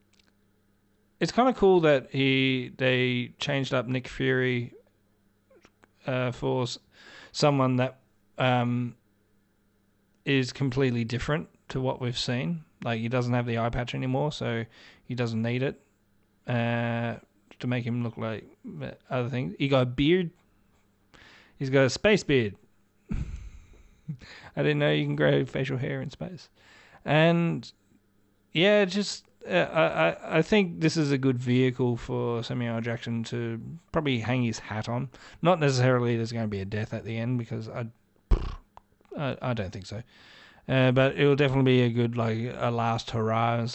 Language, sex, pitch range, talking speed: English, male, 105-135 Hz, 160 wpm